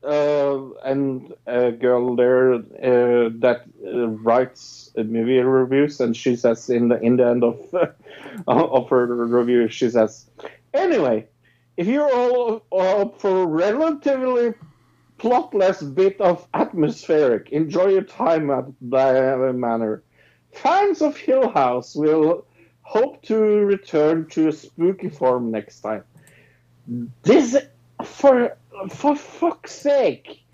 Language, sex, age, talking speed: English, male, 50-69, 130 wpm